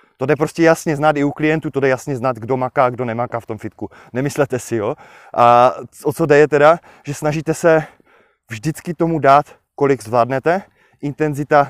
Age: 20-39